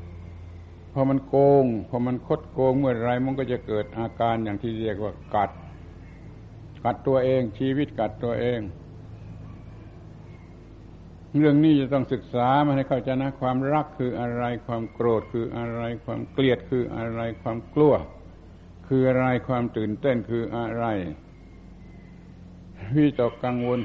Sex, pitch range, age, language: male, 100-125 Hz, 60-79, Thai